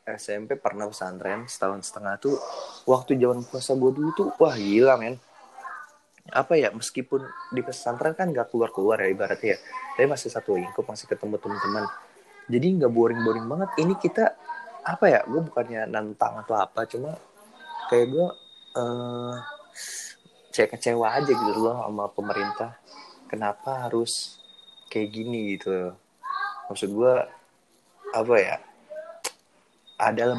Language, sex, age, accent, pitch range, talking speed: Indonesian, male, 20-39, native, 105-170 Hz, 130 wpm